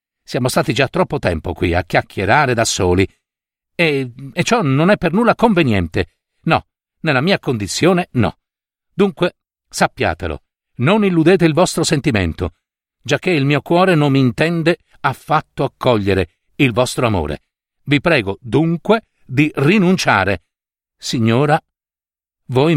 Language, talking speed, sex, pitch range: Italian, 130 wpm, male, 110-170 Hz